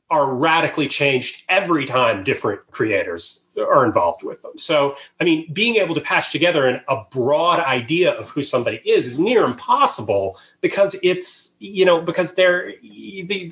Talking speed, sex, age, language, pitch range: 165 wpm, male, 30-49, English, 135-180 Hz